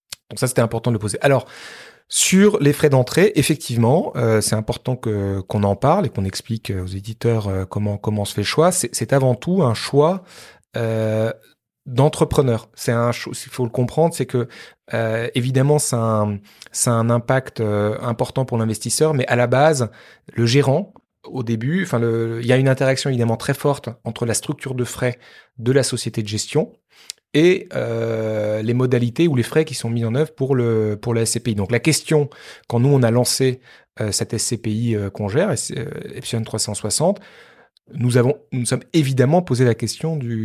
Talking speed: 195 wpm